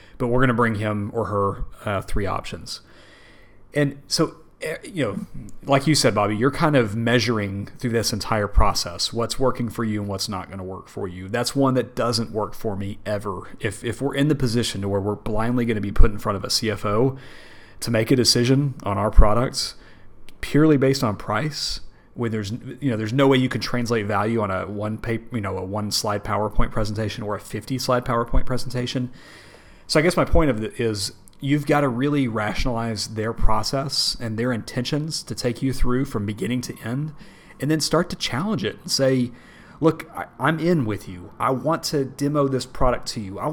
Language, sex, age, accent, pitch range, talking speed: English, male, 30-49, American, 105-140 Hz, 210 wpm